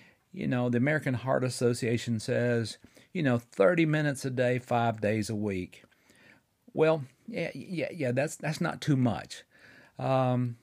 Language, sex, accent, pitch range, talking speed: English, male, American, 120-150 Hz, 150 wpm